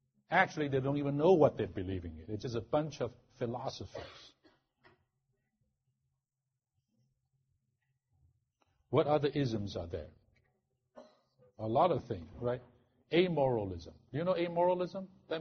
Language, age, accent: English, 60-79, American